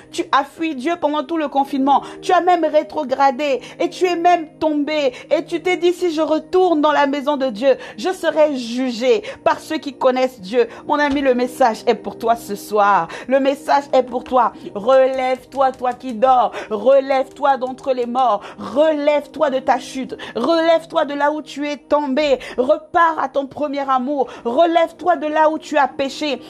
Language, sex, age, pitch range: French, female, 50-69, 270-340 Hz